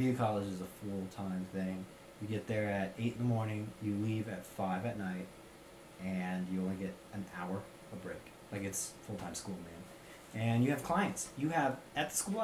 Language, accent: English, American